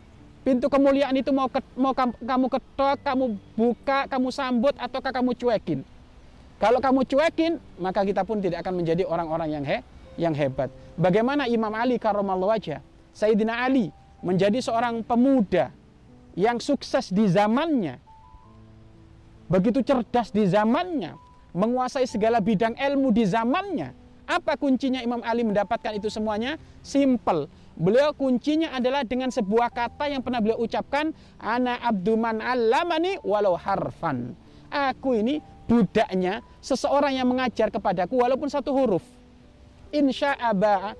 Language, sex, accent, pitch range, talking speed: Indonesian, male, native, 205-270 Hz, 125 wpm